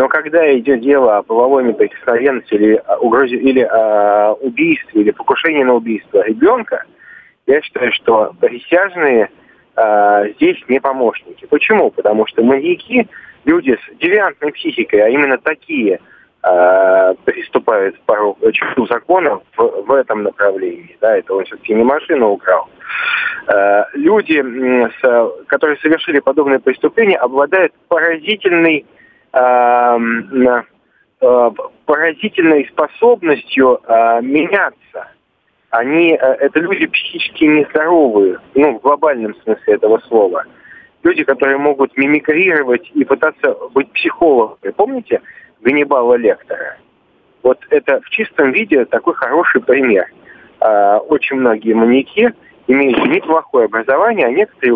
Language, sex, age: Russian, male, 20-39